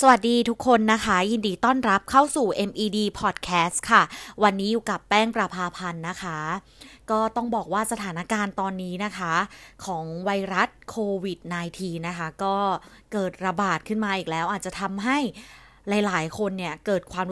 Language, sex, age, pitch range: Thai, female, 20-39, 180-220 Hz